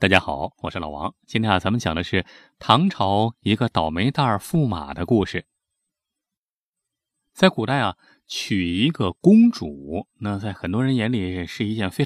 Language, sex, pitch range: Chinese, male, 95-140 Hz